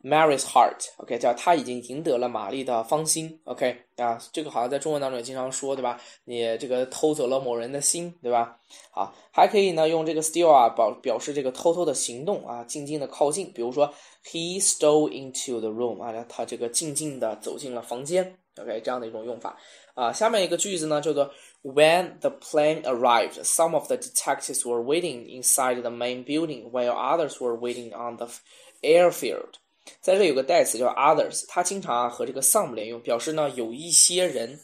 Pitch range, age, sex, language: 120-160 Hz, 10-29, male, Chinese